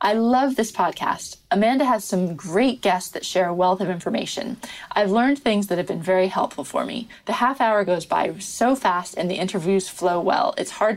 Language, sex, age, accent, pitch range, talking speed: English, female, 20-39, American, 185-230 Hz, 215 wpm